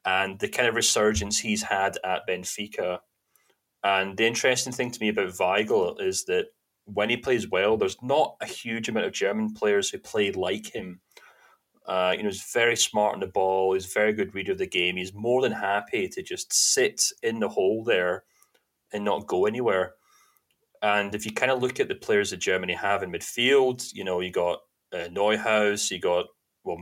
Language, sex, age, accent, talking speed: English, male, 30-49, British, 200 wpm